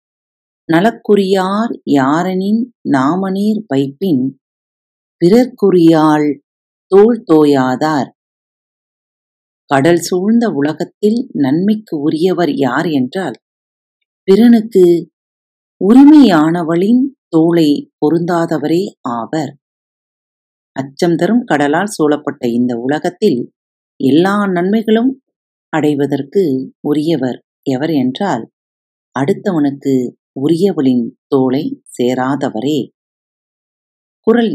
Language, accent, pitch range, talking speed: Tamil, native, 135-205 Hz, 65 wpm